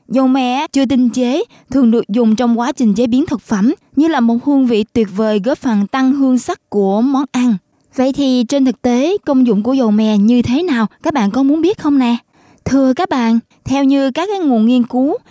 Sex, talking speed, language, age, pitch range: female, 235 wpm, Vietnamese, 20-39, 225-275 Hz